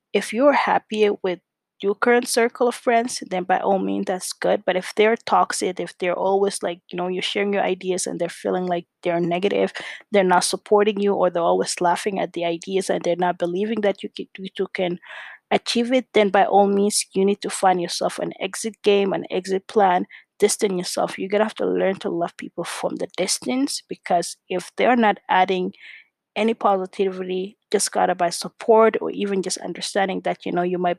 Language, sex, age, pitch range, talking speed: English, female, 20-39, 180-205 Hz, 205 wpm